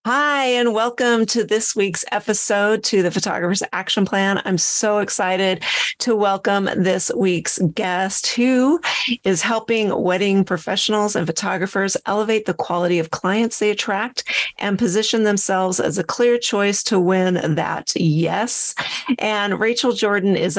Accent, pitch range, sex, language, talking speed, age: American, 180-220 Hz, female, English, 145 wpm, 40-59